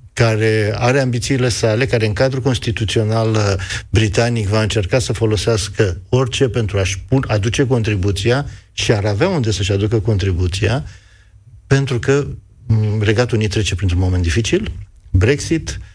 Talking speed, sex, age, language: 130 wpm, male, 50-69, Romanian